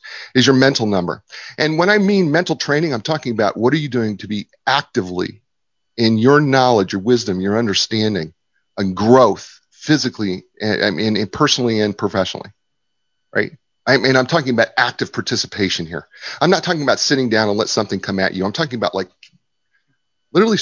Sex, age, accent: male, 40-59, American